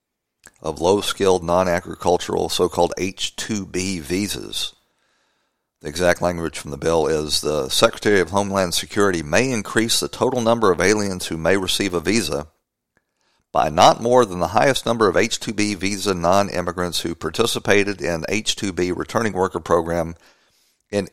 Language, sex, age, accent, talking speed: English, male, 50-69, American, 140 wpm